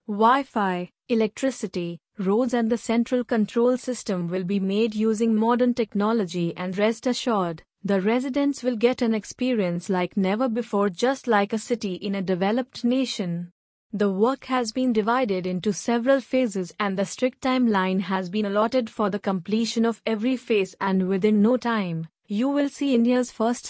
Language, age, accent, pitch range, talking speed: English, 30-49, Indian, 200-245 Hz, 160 wpm